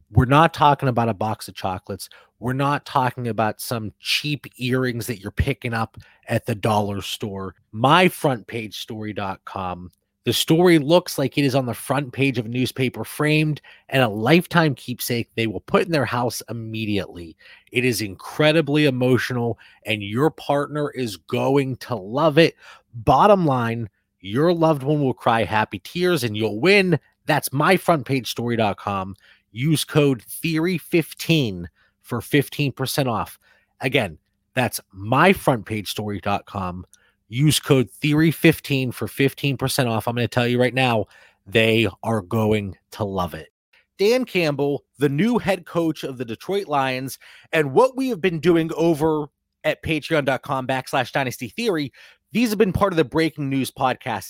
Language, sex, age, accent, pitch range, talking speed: English, male, 30-49, American, 110-150 Hz, 145 wpm